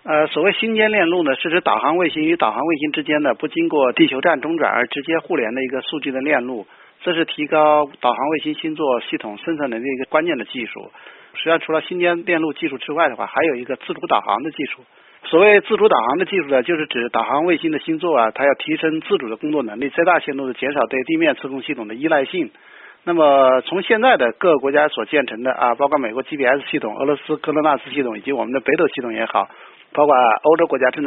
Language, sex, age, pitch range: Chinese, male, 50-69, 130-175 Hz